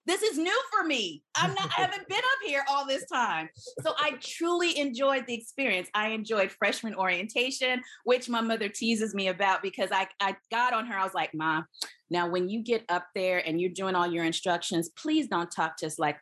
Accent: American